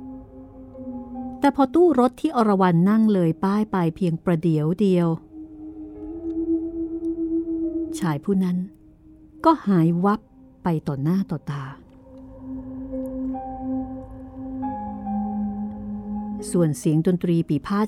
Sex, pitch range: female, 165-260 Hz